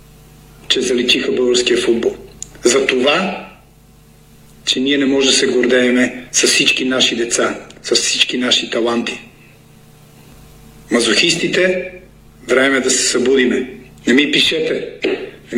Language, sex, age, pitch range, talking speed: Bulgarian, male, 50-69, 110-145 Hz, 115 wpm